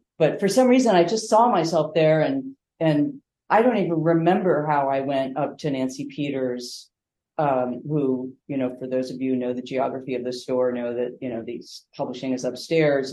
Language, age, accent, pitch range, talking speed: English, 40-59, American, 125-170 Hz, 205 wpm